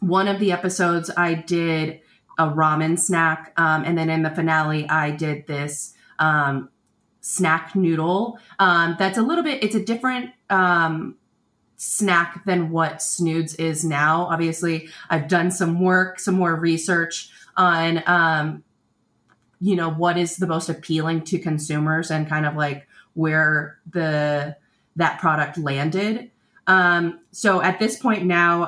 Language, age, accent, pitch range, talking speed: English, 30-49, American, 155-180 Hz, 145 wpm